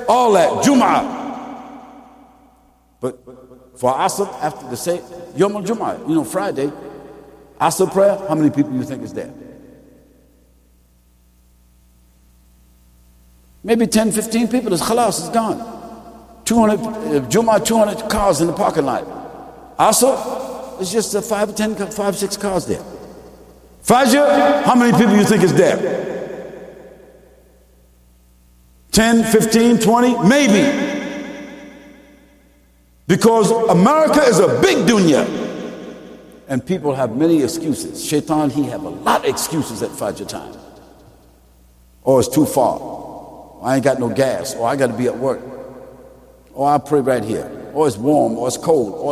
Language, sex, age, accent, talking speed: English, male, 60-79, American, 135 wpm